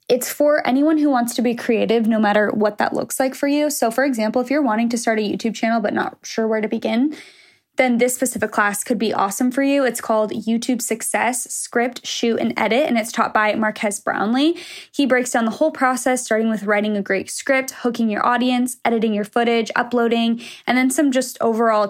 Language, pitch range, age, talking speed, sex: English, 225-260 Hz, 10-29, 220 wpm, female